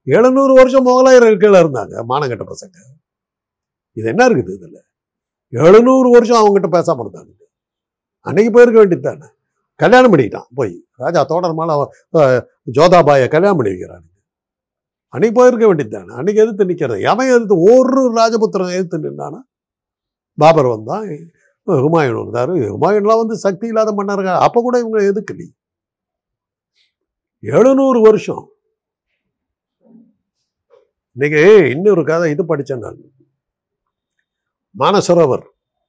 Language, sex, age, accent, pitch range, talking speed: Tamil, male, 60-79, native, 145-220 Hz, 110 wpm